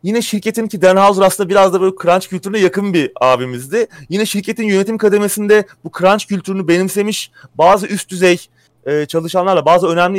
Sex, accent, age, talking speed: male, native, 30-49, 160 wpm